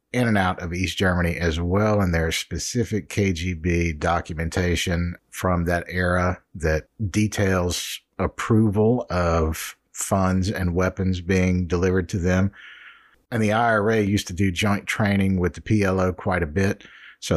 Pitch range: 85-100 Hz